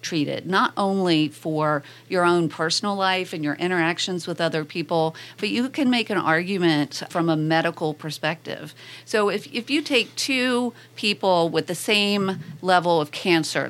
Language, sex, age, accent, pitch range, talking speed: English, female, 40-59, American, 160-195 Hz, 160 wpm